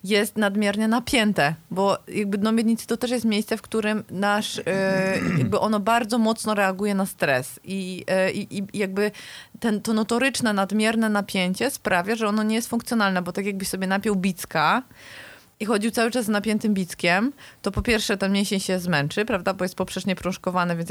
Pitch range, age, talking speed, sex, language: 185-220 Hz, 30-49, 185 wpm, female, Polish